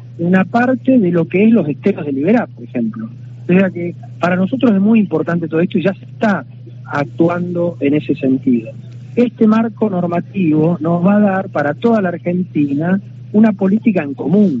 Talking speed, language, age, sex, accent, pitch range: 185 wpm, Spanish, 40-59, male, Argentinian, 135-180 Hz